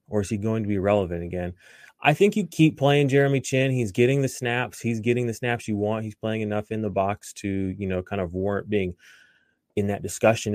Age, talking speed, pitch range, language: 20-39, 235 wpm, 105-120 Hz, English